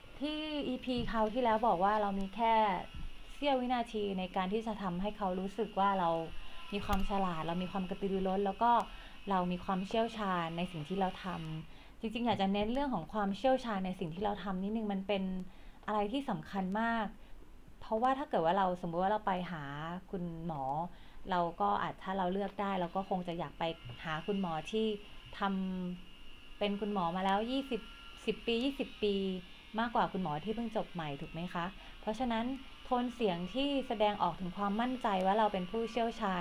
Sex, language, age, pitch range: female, Thai, 30-49, 180-220 Hz